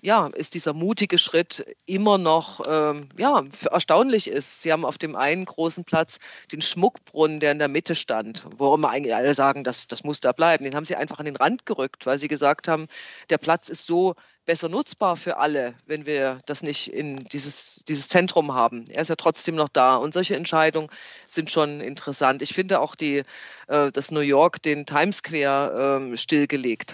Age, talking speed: 40-59, 195 wpm